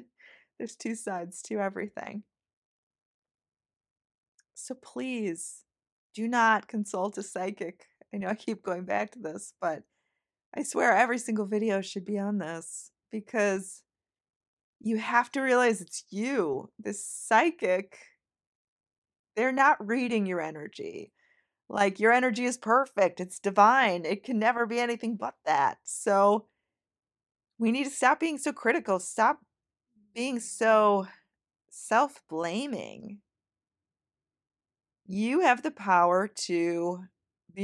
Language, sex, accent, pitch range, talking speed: English, female, American, 185-235 Hz, 120 wpm